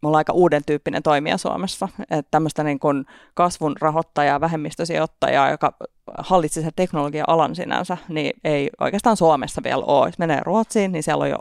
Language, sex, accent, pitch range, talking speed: Finnish, female, native, 155-175 Hz, 160 wpm